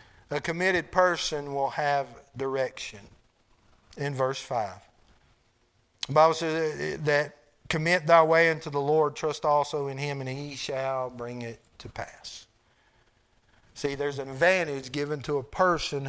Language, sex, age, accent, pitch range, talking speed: English, male, 50-69, American, 145-190 Hz, 140 wpm